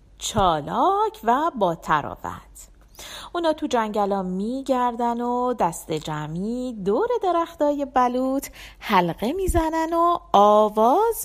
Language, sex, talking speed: Persian, female, 95 wpm